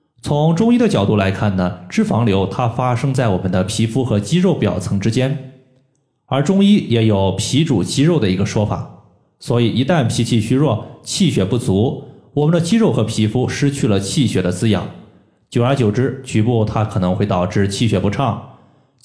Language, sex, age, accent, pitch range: Chinese, male, 20-39, native, 100-135 Hz